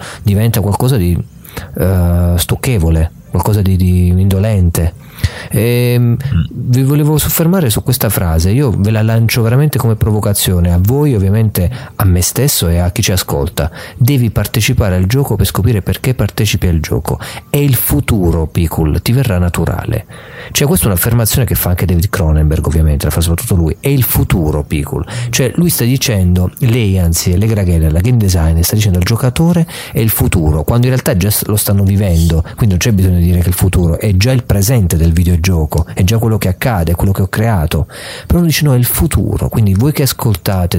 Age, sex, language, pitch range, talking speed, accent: 40-59, male, Italian, 90-125 Hz, 190 wpm, native